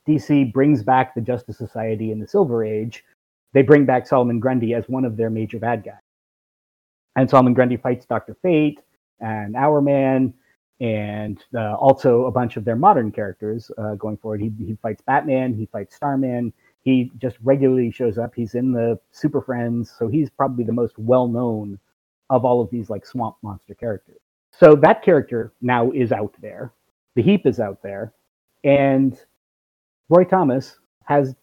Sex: male